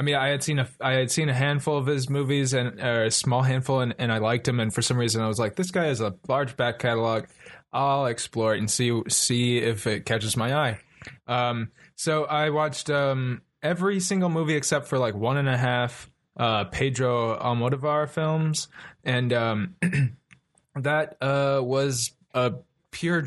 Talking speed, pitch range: 195 wpm, 115-145 Hz